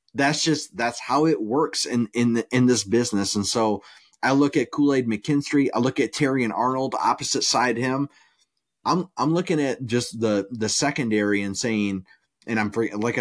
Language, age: English, 30-49